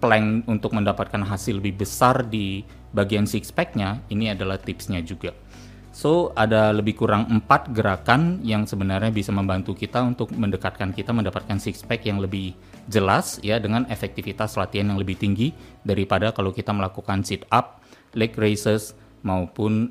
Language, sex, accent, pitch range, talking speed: Indonesian, male, native, 95-110 Hz, 150 wpm